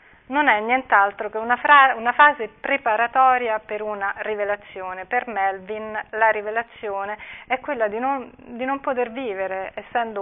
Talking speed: 145 wpm